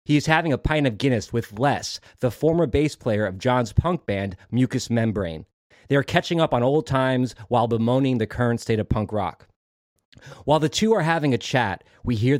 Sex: male